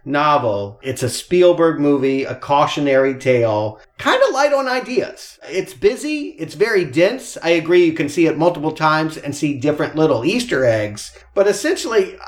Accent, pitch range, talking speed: American, 135-170 Hz, 165 wpm